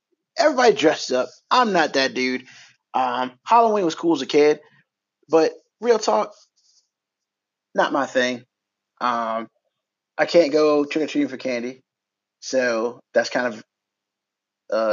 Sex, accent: male, American